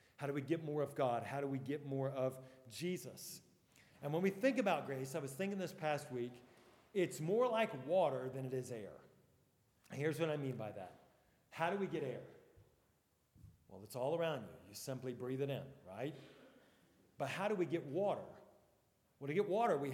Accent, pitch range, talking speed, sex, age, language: American, 135-180 Hz, 205 wpm, male, 40-59, English